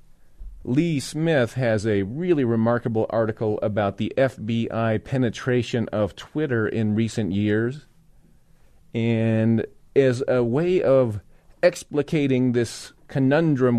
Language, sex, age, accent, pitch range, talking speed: English, male, 40-59, American, 115-140 Hz, 105 wpm